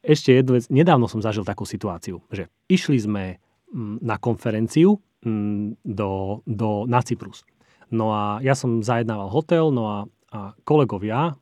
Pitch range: 110-135 Hz